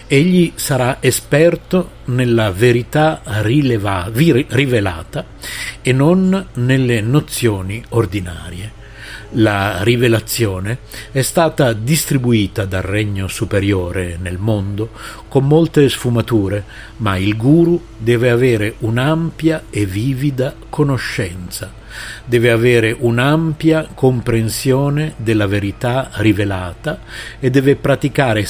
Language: Italian